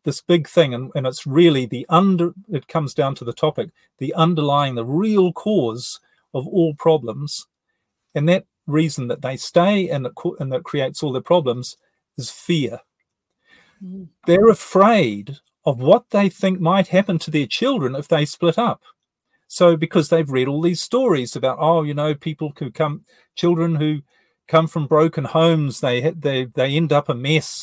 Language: English